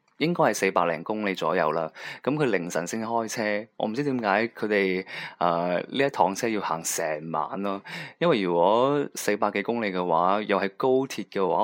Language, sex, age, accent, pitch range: Chinese, male, 20-39, native, 90-115 Hz